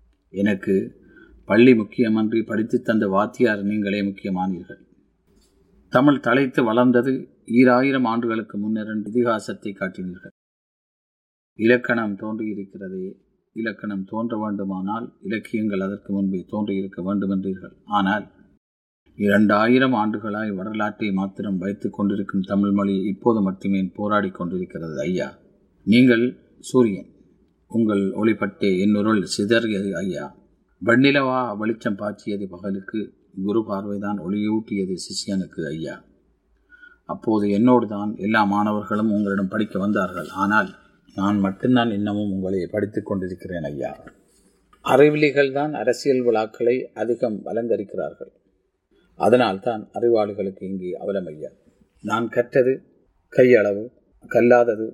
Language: Tamil